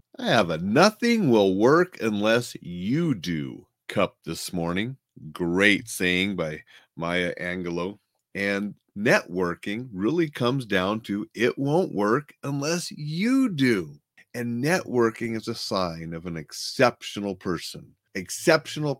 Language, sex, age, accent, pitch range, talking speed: English, male, 40-59, American, 90-120 Hz, 125 wpm